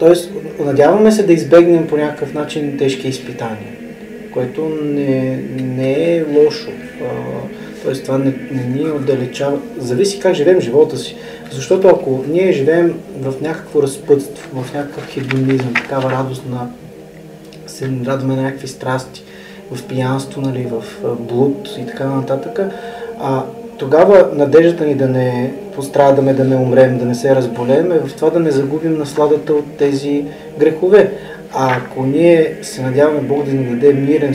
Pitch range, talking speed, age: 130-160 Hz, 140 wpm, 20-39